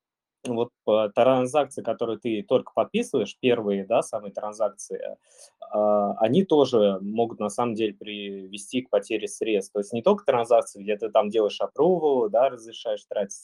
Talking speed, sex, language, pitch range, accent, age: 155 wpm, male, Russian, 105-130 Hz, native, 20-39